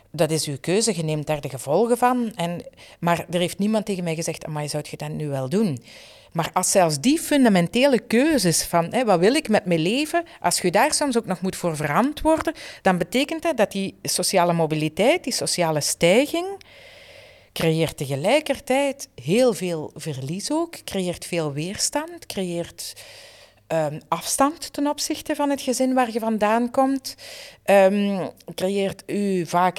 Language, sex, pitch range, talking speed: Dutch, female, 165-260 Hz, 165 wpm